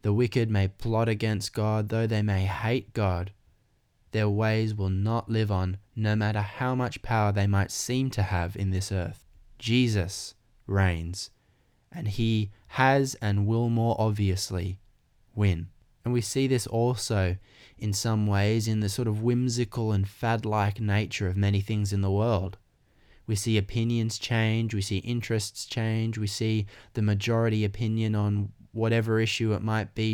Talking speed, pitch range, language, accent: 160 wpm, 100-120 Hz, English, Australian